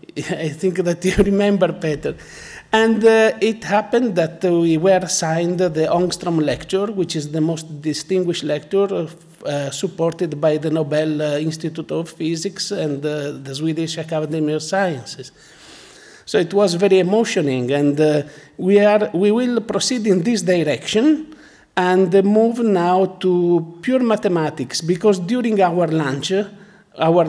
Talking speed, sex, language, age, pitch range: 145 wpm, male, German, 50-69, 160-200 Hz